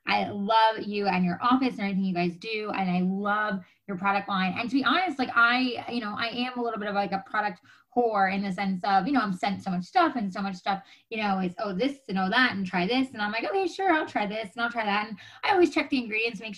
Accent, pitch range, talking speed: American, 195-250 Hz, 295 wpm